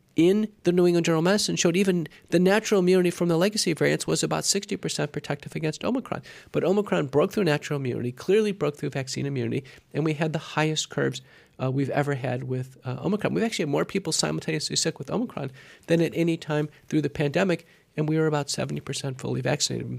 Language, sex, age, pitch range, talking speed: English, male, 40-59, 145-185 Hz, 205 wpm